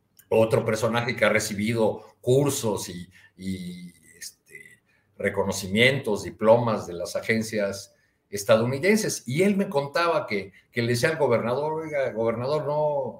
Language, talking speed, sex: Spanish, 125 wpm, male